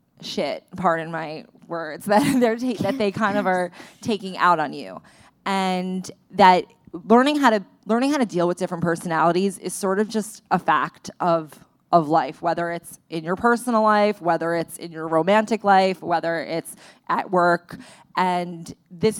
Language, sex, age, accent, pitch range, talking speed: English, female, 20-39, American, 170-205 Hz, 170 wpm